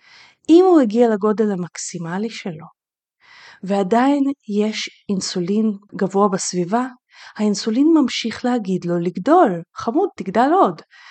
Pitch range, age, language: 195-260 Hz, 30-49, Hebrew